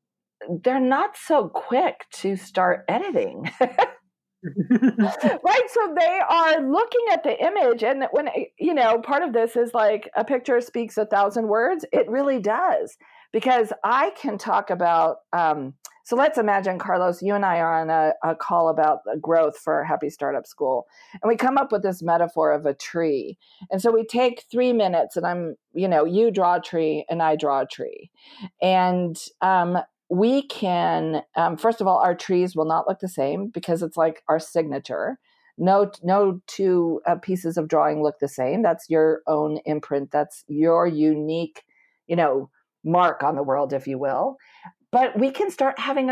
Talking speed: 180 wpm